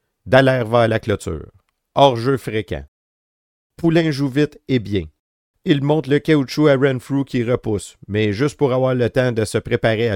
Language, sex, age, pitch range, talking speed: French, male, 50-69, 105-135 Hz, 170 wpm